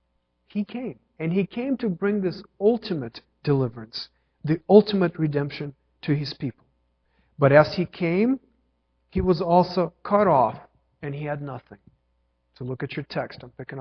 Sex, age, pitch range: male, 50-69, 130-180 Hz